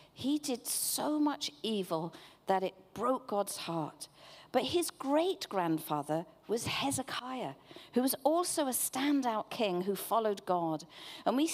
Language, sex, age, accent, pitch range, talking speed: English, female, 50-69, British, 185-280 Hz, 140 wpm